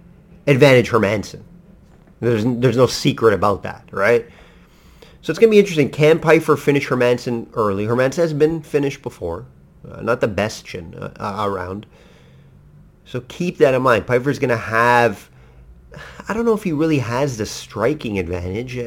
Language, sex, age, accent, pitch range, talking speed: English, male, 30-49, American, 110-150 Hz, 165 wpm